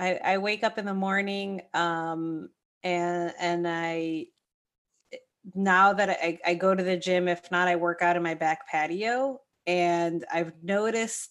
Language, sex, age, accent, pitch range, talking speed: English, female, 30-49, American, 165-185 Hz, 160 wpm